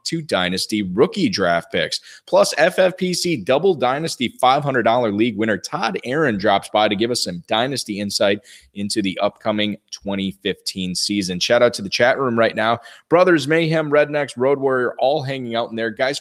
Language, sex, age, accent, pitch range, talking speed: English, male, 20-39, American, 100-130 Hz, 170 wpm